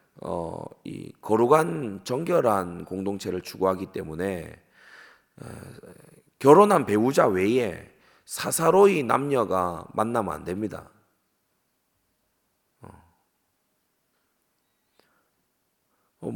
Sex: male